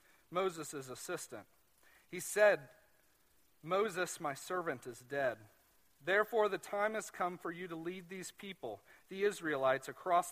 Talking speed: 135 wpm